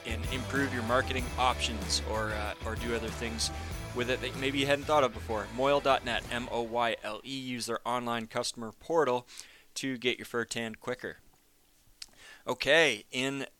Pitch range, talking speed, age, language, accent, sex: 115-125 Hz, 155 wpm, 20-39, English, American, male